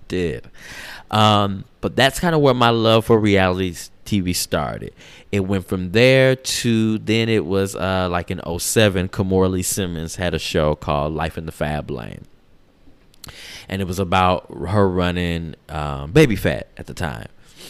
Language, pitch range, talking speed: English, 85-100 Hz, 160 wpm